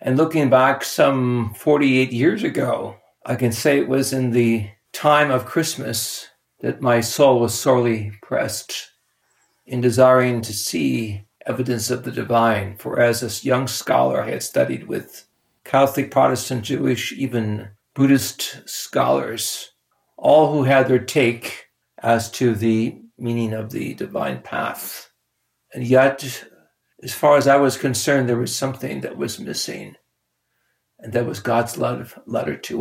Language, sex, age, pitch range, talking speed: English, male, 60-79, 115-135 Hz, 145 wpm